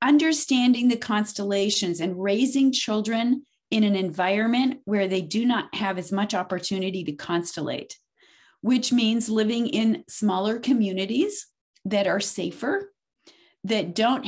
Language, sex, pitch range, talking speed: English, female, 195-245 Hz, 125 wpm